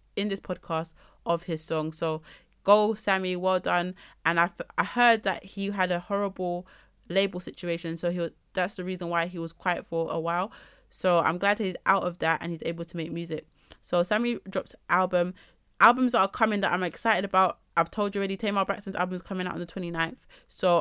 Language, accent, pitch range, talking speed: English, British, 170-205 Hz, 220 wpm